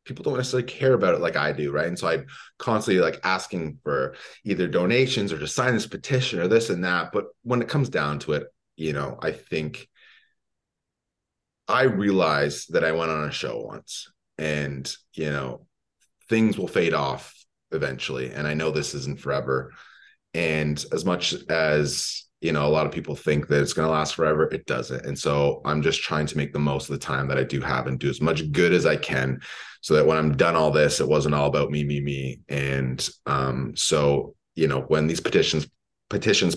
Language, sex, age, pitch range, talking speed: English, male, 30-49, 70-80 Hz, 210 wpm